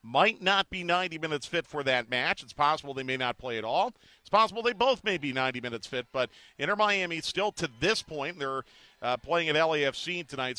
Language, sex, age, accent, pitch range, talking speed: English, male, 50-69, American, 130-170 Hz, 215 wpm